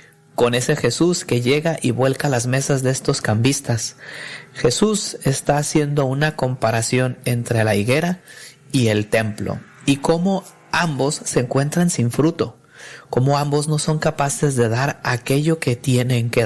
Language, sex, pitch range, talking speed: Spanish, male, 120-150 Hz, 150 wpm